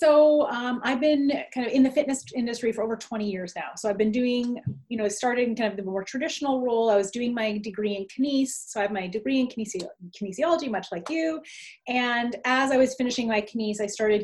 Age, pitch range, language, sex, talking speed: 30-49, 200-250 Hz, English, female, 230 wpm